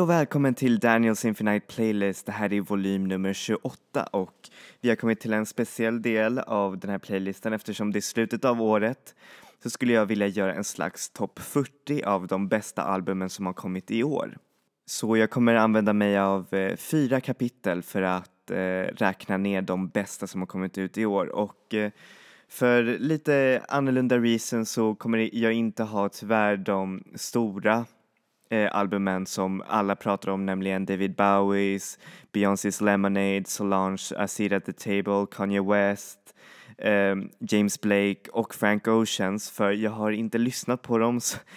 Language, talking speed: Swedish, 165 wpm